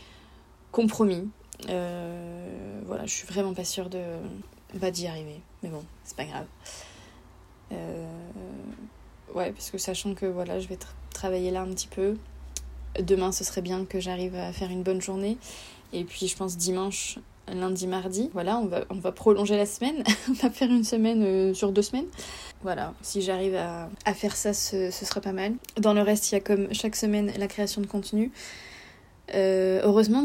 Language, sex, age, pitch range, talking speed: French, female, 20-39, 180-210 Hz, 185 wpm